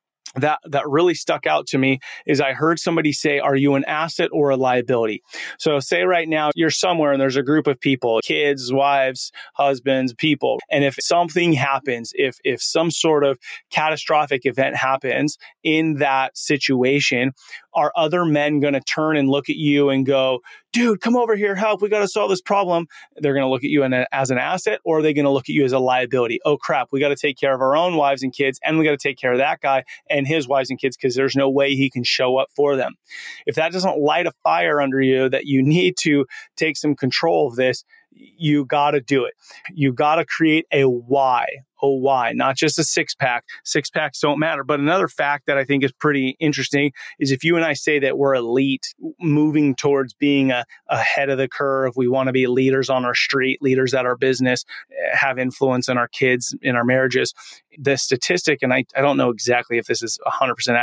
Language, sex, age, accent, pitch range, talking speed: English, male, 30-49, American, 130-155 Hz, 225 wpm